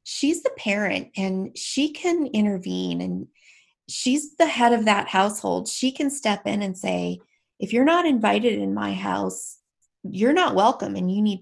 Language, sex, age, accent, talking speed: English, female, 30-49, American, 175 wpm